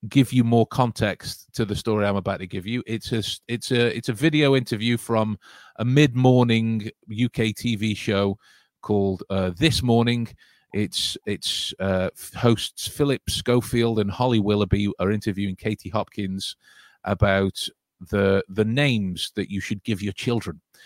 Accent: British